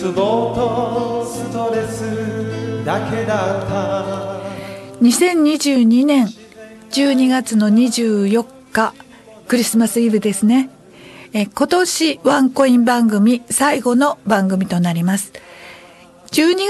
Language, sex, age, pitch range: Japanese, female, 50-69, 210-285 Hz